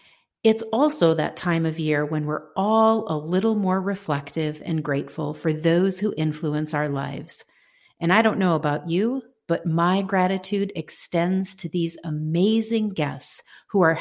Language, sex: English, female